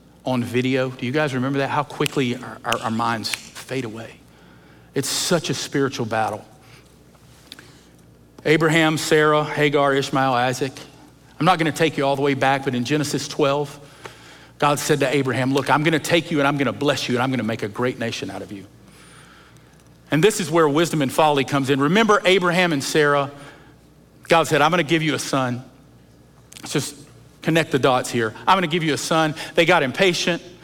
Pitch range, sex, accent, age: 130-175 Hz, male, American, 50-69